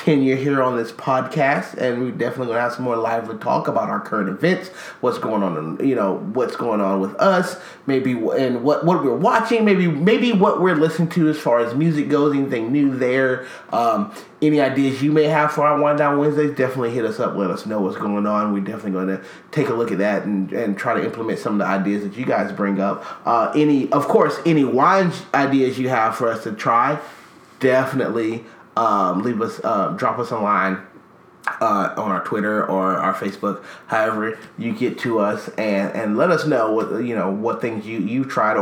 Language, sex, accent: English, male, American